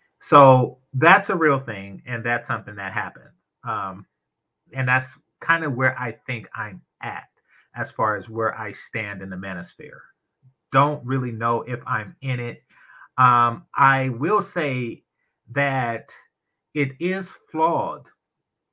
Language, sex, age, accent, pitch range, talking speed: English, male, 30-49, American, 125-160 Hz, 140 wpm